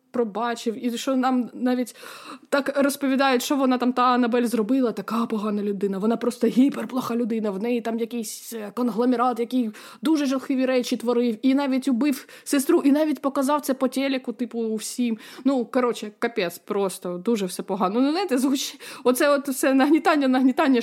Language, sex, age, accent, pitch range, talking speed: Ukrainian, female, 20-39, native, 230-275 Hz, 165 wpm